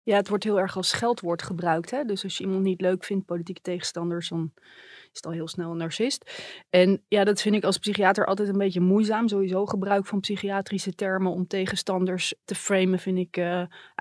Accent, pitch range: Dutch, 180-205 Hz